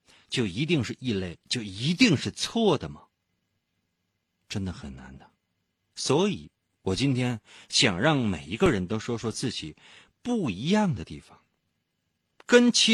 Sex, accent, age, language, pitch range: male, native, 50-69, Chinese, 95-140 Hz